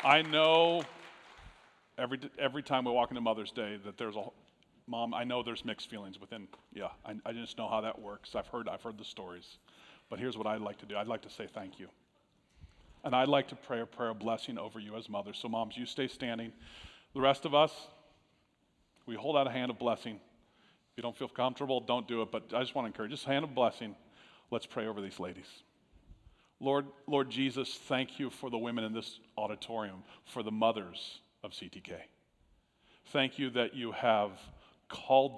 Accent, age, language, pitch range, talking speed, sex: American, 40-59, English, 110-135 Hz, 205 wpm, male